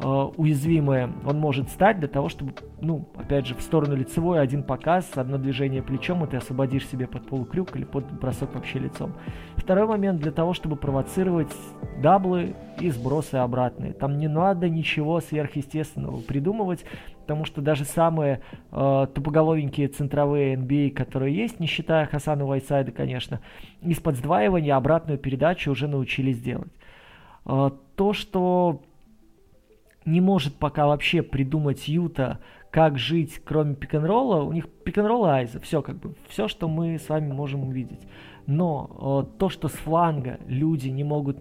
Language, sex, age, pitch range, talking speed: Russian, male, 20-39, 135-165 Hz, 150 wpm